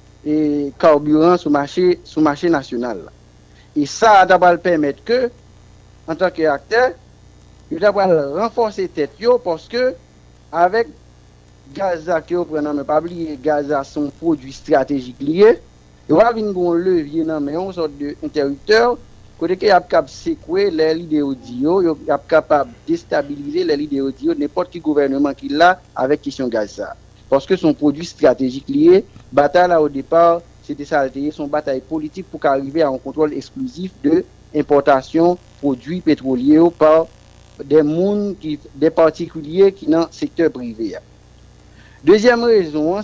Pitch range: 140-185 Hz